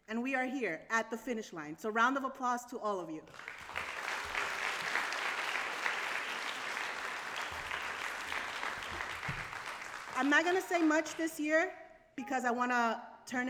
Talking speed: 120 wpm